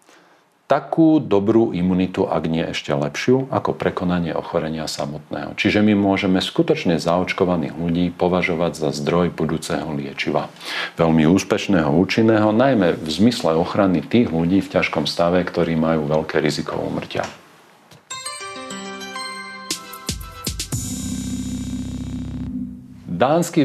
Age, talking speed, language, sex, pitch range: 50-69, 100 wpm, Slovak, male, 85-115 Hz